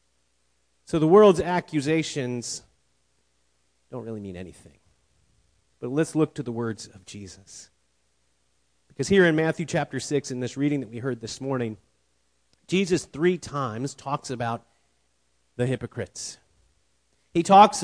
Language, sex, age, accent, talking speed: English, male, 40-59, American, 130 wpm